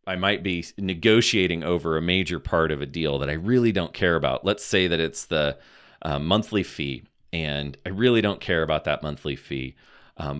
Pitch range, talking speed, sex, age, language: 80-105 Hz, 200 wpm, male, 30-49, English